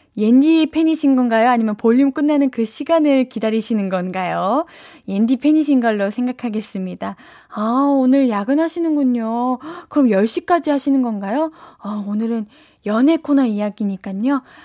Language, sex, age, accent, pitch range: Korean, female, 10-29, native, 215-310 Hz